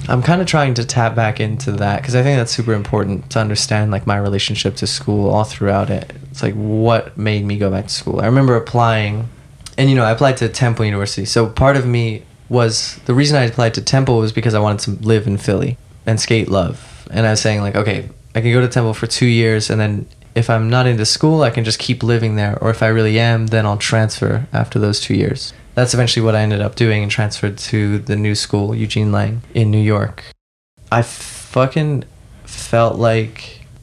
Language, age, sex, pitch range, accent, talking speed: English, 20-39, male, 110-125 Hz, American, 225 wpm